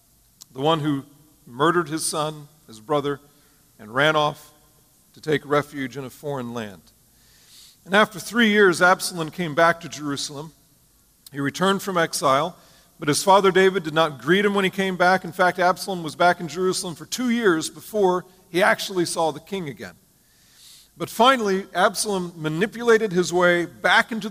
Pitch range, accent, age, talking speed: 150-190 Hz, American, 40-59, 170 wpm